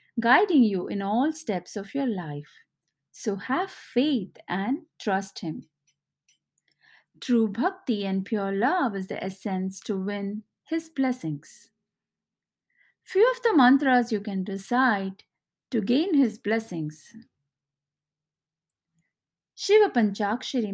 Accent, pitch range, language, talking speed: Indian, 195-255 Hz, English, 115 wpm